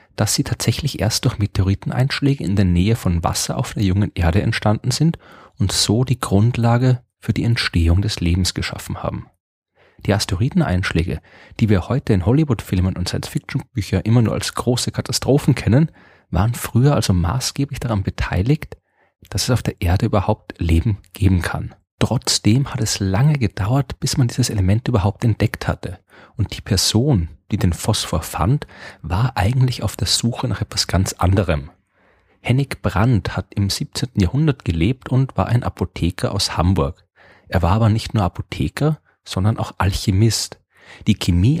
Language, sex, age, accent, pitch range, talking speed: German, male, 30-49, German, 95-120 Hz, 160 wpm